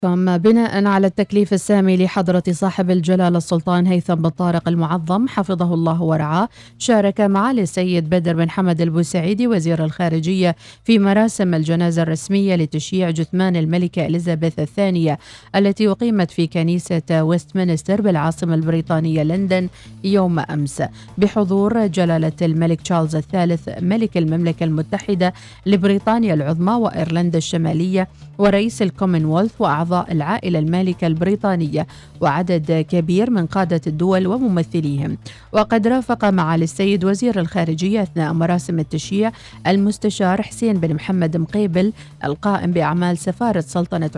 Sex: female